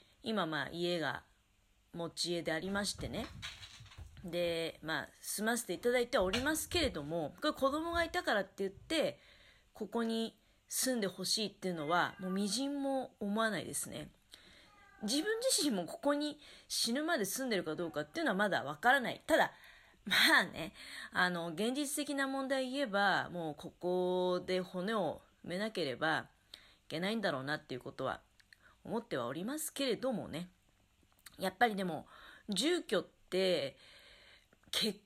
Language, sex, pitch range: Japanese, female, 175-265 Hz